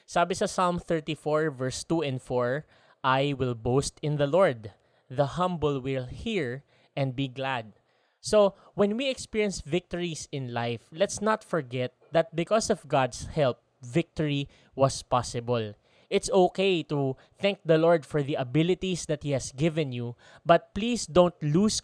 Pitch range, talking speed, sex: 130-170 Hz, 155 wpm, male